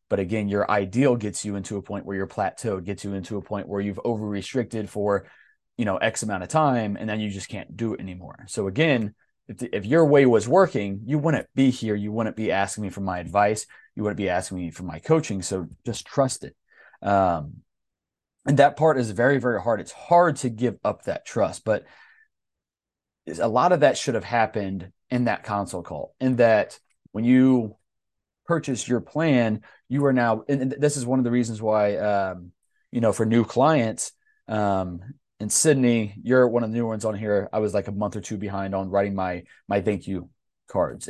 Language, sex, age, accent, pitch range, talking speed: English, male, 30-49, American, 95-125 Hz, 205 wpm